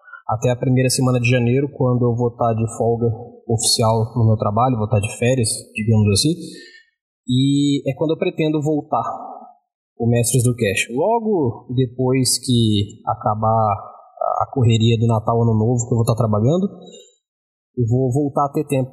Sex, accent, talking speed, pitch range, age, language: male, Brazilian, 170 wpm, 120-180 Hz, 20-39, Portuguese